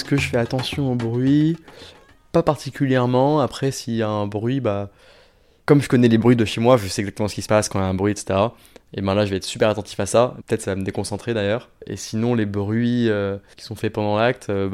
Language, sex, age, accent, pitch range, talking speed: French, male, 20-39, French, 95-115 Hz, 265 wpm